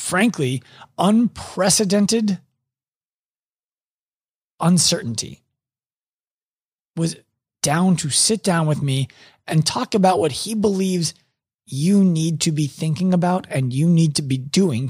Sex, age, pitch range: male, 30-49, 140-190 Hz